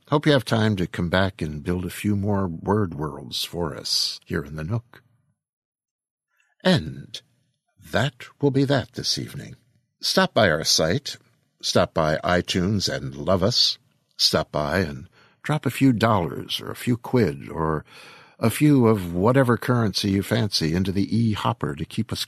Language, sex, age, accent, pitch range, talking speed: English, male, 60-79, American, 85-130 Hz, 165 wpm